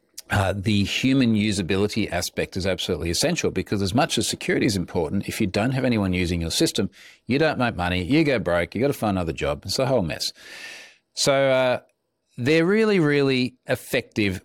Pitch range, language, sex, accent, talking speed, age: 95-115 Hz, English, male, Australian, 190 wpm, 40-59